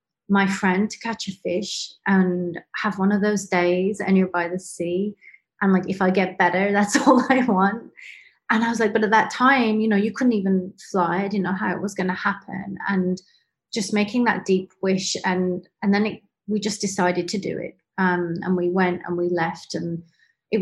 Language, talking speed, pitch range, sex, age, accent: English, 210 wpm, 180-205 Hz, female, 30-49, British